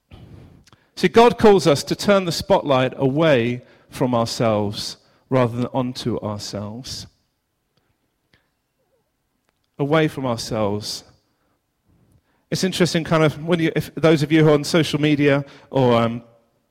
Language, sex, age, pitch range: English, male, 40-59, 120-165 Hz